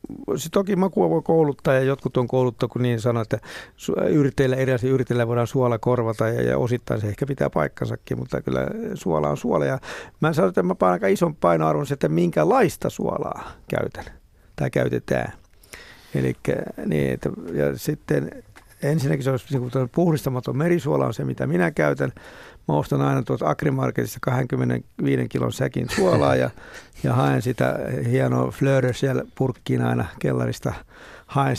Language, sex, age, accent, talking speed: Finnish, male, 60-79, native, 150 wpm